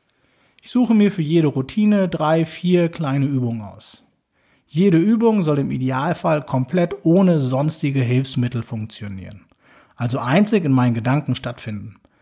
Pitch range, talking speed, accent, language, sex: 130-180 Hz, 135 wpm, German, German, male